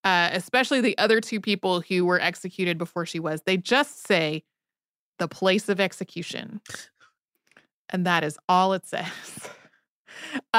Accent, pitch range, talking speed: American, 175-215 Hz, 140 wpm